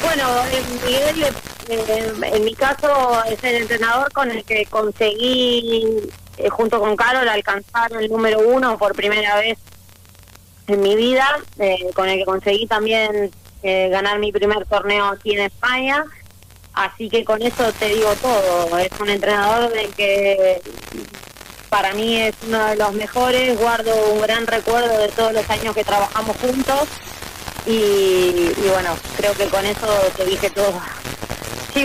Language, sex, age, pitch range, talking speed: Spanish, female, 20-39, 205-245 Hz, 145 wpm